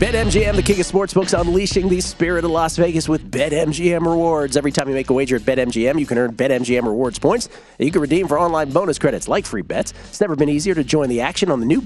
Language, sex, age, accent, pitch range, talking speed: English, male, 40-59, American, 125-165 Hz, 255 wpm